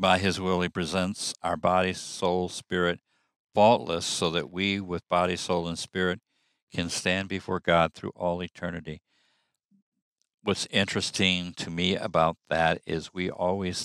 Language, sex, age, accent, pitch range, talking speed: English, male, 60-79, American, 85-95 Hz, 145 wpm